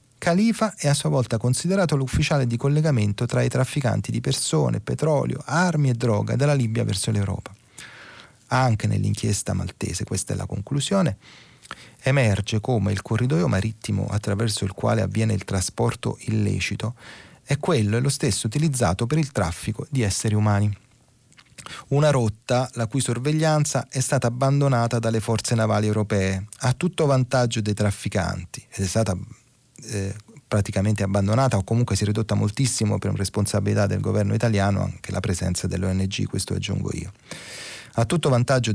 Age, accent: 30-49, native